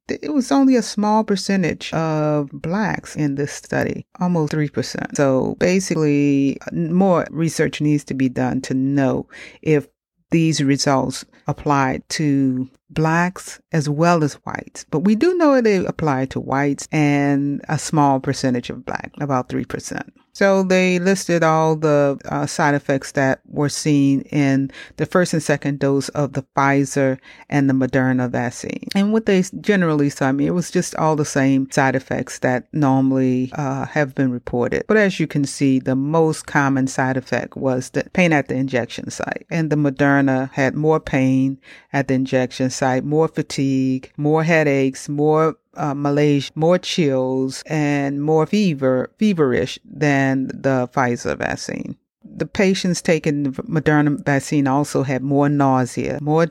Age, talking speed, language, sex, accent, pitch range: 40-59, 155 wpm, English, female, American, 135-160 Hz